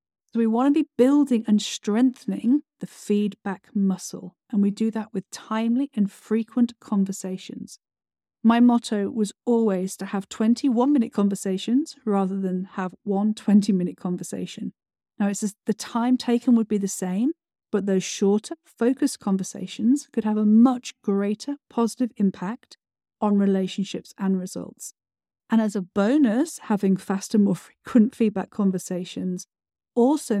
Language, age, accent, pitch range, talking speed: English, 40-59, British, 195-235 Hz, 145 wpm